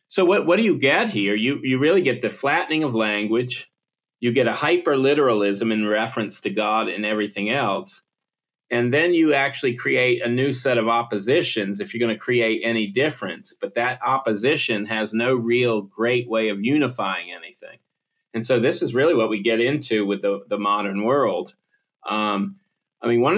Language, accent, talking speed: English, American, 185 wpm